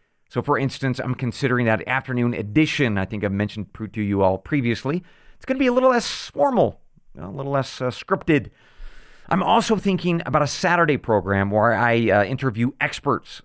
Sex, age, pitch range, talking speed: male, 40-59, 110-160 Hz, 185 wpm